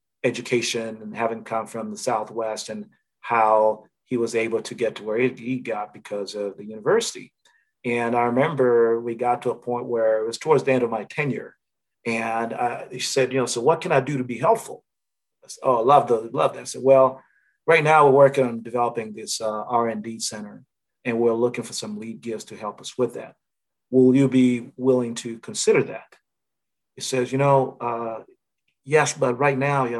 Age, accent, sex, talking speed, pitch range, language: 40-59, American, male, 200 wpm, 115-135 Hz, English